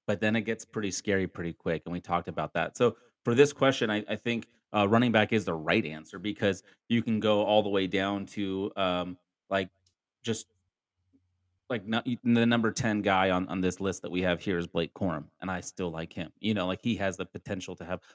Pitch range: 95-115 Hz